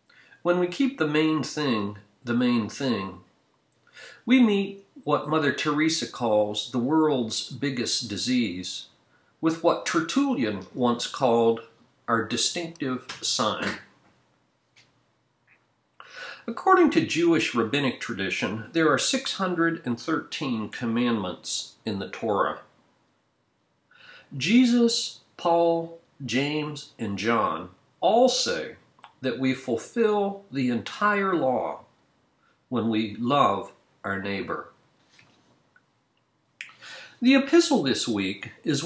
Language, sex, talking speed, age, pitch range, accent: English, male, 95 wpm, 50-69, 120-200 Hz, American